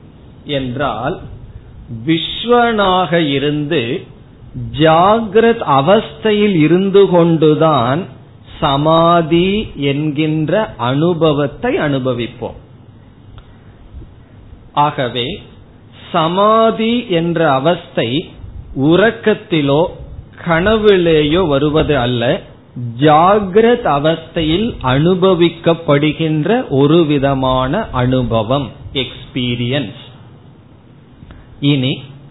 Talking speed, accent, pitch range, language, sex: 50 wpm, native, 130-170 Hz, Tamil, male